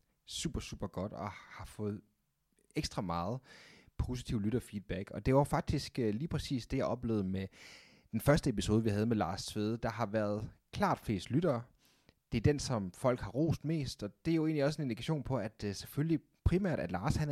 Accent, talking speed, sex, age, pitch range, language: native, 205 wpm, male, 30-49, 105-140 Hz, Danish